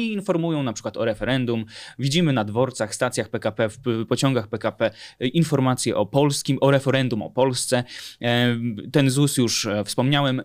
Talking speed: 140 wpm